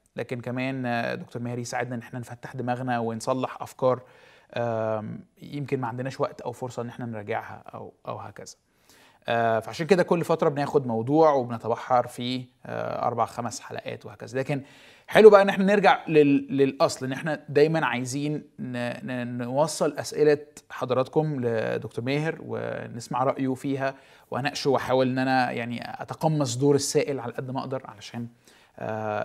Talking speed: 135 wpm